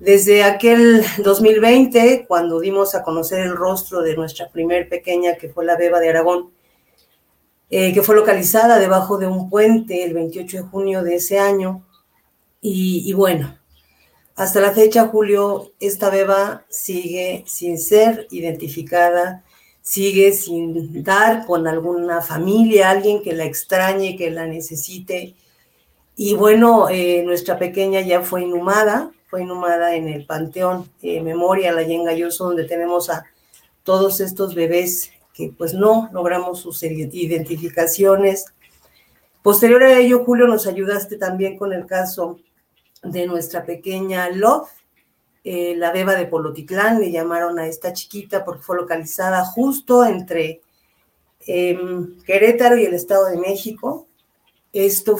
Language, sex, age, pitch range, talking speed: Spanish, female, 40-59, 170-200 Hz, 135 wpm